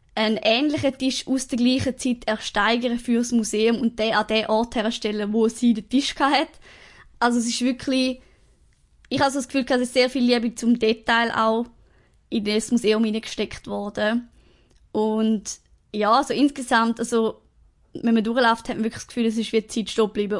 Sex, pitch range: female, 220-250 Hz